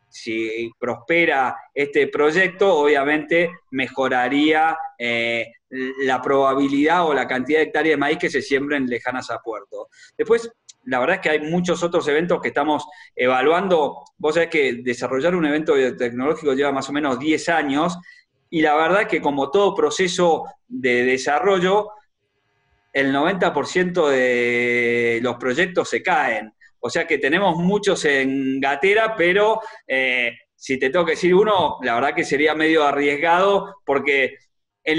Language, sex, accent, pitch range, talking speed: Spanish, male, Argentinian, 130-185 Hz, 150 wpm